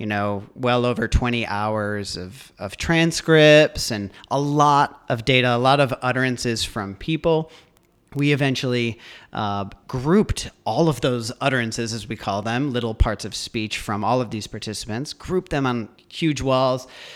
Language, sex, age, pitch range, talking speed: English, male, 40-59, 110-145 Hz, 160 wpm